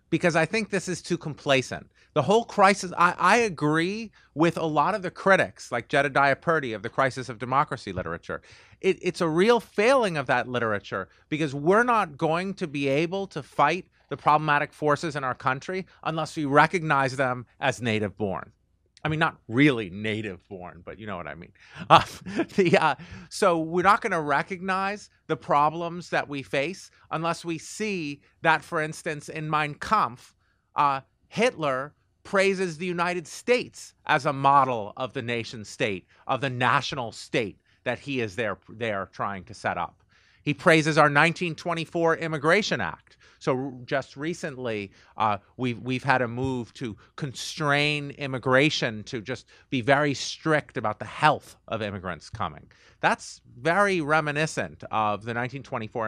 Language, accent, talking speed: English, American, 160 wpm